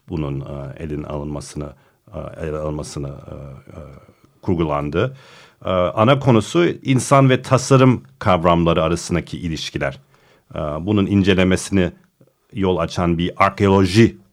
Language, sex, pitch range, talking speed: Turkish, male, 85-110 Hz, 85 wpm